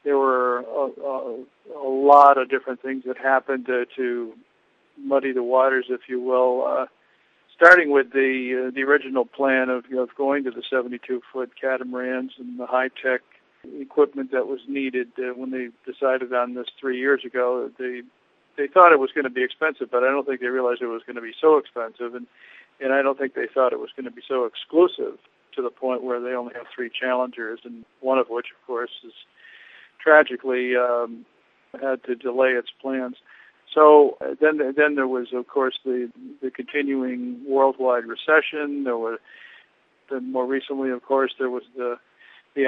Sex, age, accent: male, 50-69, American